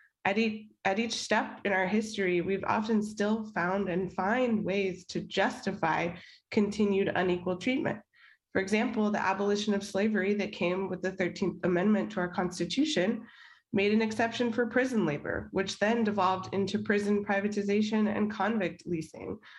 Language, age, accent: English, 20-39, American